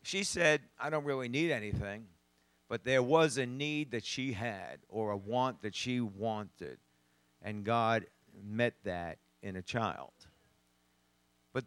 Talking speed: 150 wpm